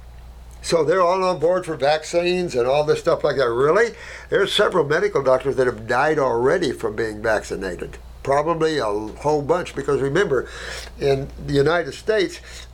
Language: English